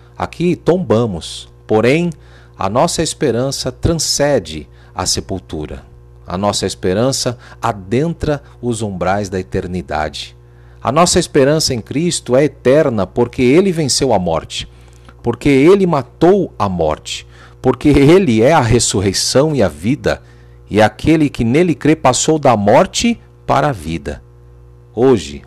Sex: male